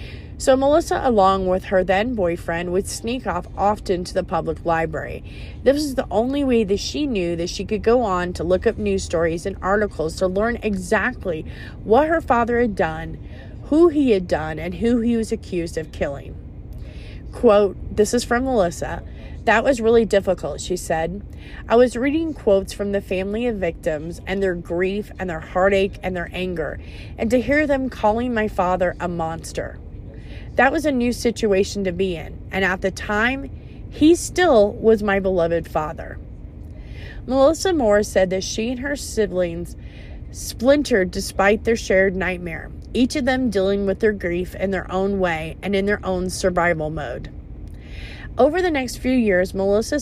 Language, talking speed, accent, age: English, 175 wpm, American, 30-49